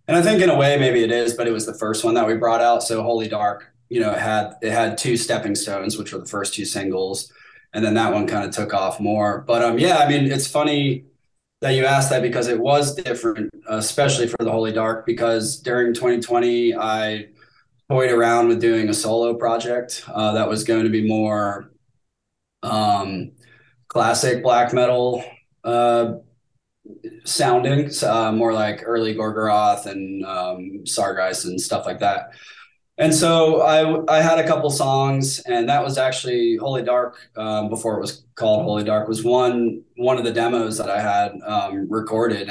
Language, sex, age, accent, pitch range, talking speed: English, male, 20-39, American, 110-130 Hz, 190 wpm